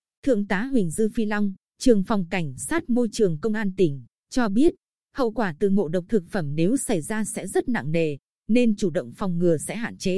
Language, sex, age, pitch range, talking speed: Vietnamese, female, 20-39, 180-235 Hz, 230 wpm